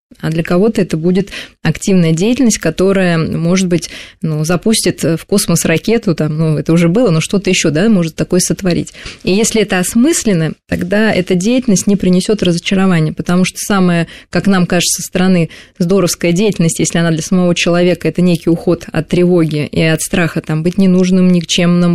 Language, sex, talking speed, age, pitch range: Russian, female, 175 wpm, 20-39, 170-200 Hz